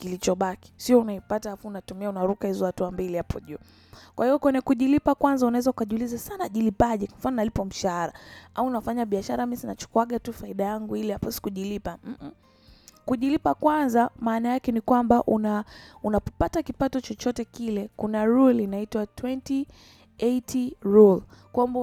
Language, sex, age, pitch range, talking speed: Swahili, female, 20-39, 195-250 Hz, 145 wpm